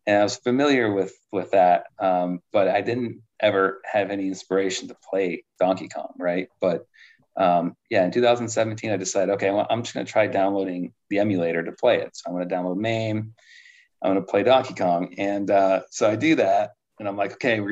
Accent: American